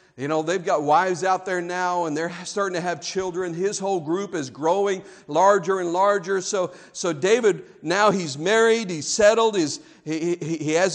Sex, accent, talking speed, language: male, American, 185 wpm, English